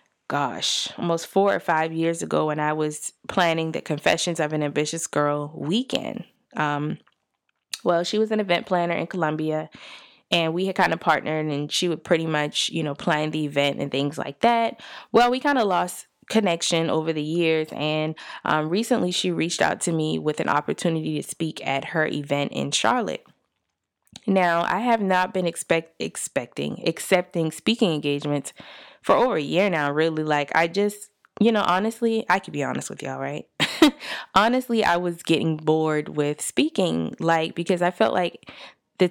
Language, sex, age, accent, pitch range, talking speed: English, female, 20-39, American, 155-195 Hz, 175 wpm